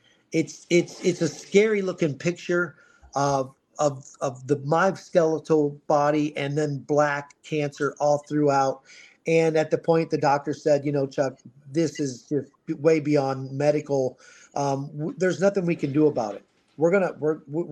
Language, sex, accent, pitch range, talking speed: English, male, American, 140-165 Hz, 165 wpm